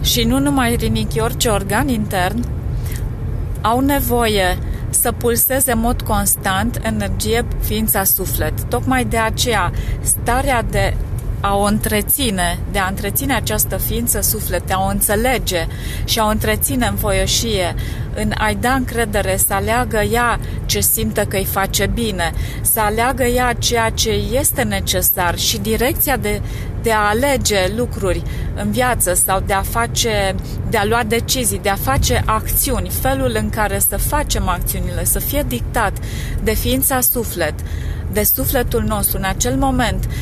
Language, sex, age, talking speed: Romanian, female, 30-49, 150 wpm